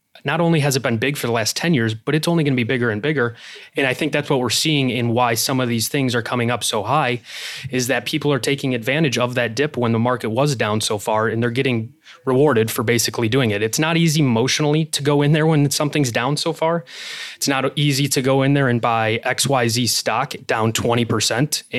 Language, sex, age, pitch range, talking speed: English, male, 20-39, 115-135 Hz, 240 wpm